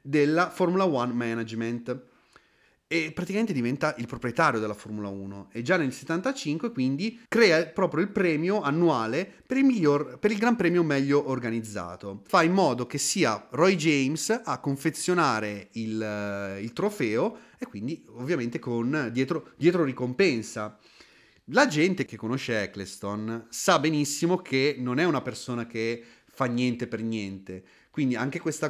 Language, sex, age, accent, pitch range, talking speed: Italian, male, 30-49, native, 115-165 Hz, 140 wpm